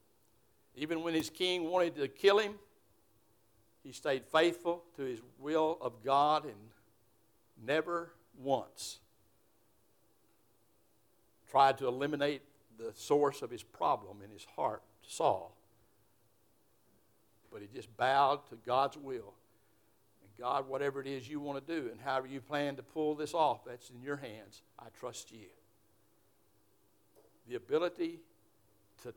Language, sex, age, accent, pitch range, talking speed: English, male, 60-79, American, 135-190 Hz, 135 wpm